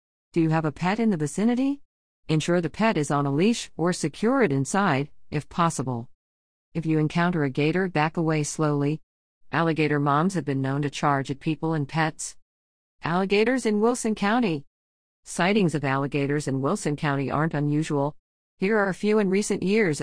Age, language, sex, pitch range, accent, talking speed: 50-69, English, female, 145-185 Hz, American, 175 wpm